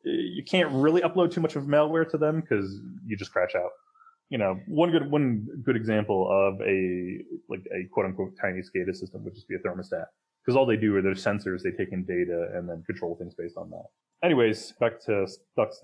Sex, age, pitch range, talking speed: male, 20-39, 95-135 Hz, 220 wpm